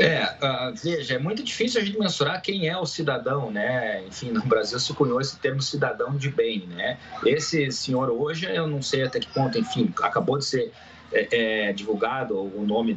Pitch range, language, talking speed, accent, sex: 115-170 Hz, Portuguese, 195 wpm, Brazilian, male